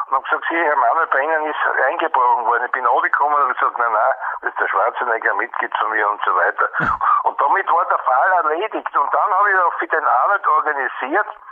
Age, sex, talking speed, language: 60-79, male, 235 wpm, German